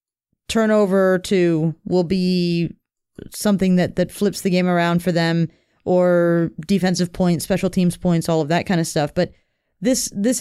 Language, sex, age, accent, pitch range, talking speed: English, female, 30-49, American, 175-210 Hz, 160 wpm